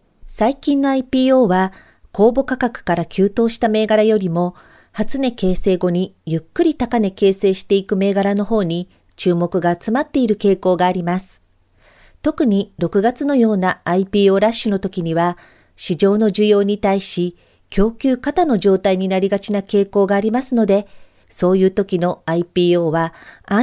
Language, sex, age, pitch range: Japanese, female, 40-59, 180-230 Hz